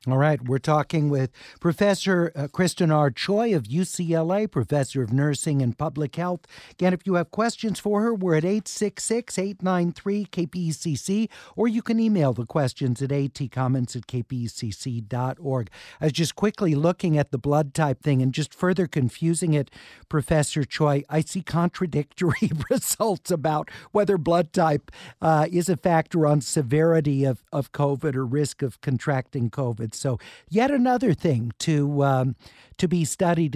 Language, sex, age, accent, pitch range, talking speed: English, male, 50-69, American, 140-180 Hz, 155 wpm